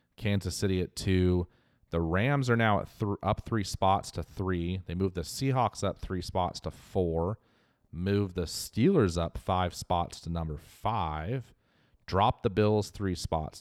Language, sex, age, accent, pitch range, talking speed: English, male, 30-49, American, 85-105 Hz, 170 wpm